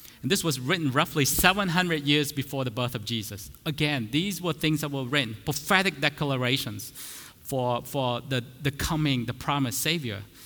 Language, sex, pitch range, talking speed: English, male, 115-155 Hz, 165 wpm